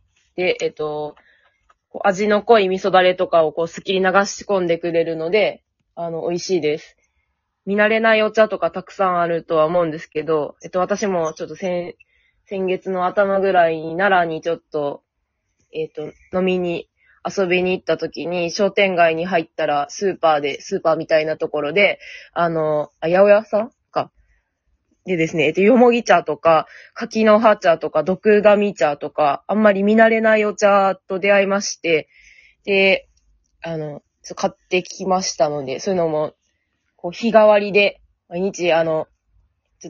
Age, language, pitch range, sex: 20-39, Japanese, 160-200 Hz, female